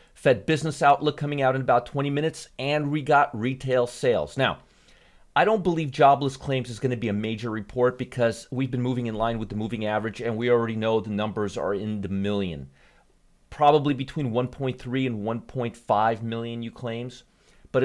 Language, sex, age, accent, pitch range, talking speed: English, male, 40-59, American, 105-135 Hz, 190 wpm